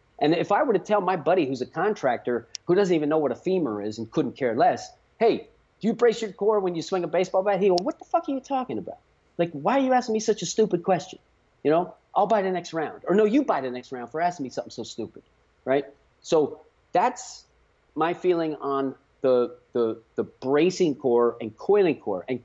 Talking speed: 235 wpm